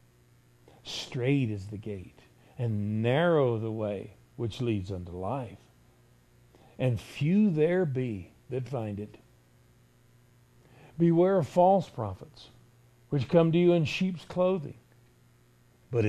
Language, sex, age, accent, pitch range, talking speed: English, male, 50-69, American, 105-170 Hz, 115 wpm